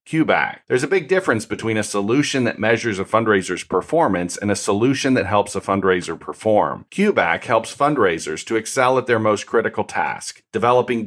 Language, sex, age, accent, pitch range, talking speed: English, male, 40-59, American, 95-130 Hz, 175 wpm